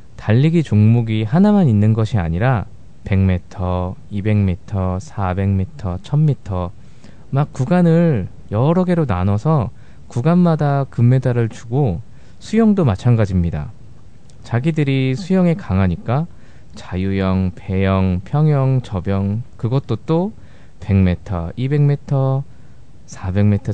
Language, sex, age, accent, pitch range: Korean, male, 20-39, native, 100-145 Hz